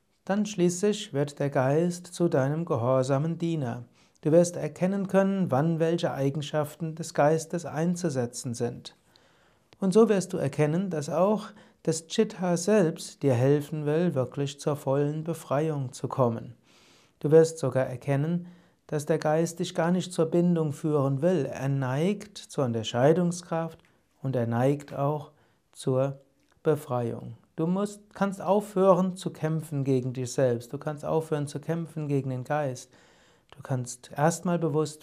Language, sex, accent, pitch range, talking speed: German, male, German, 135-170 Hz, 145 wpm